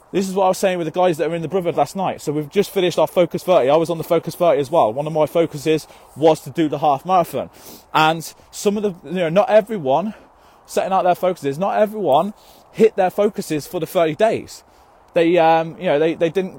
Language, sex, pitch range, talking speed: English, male, 155-190 Hz, 250 wpm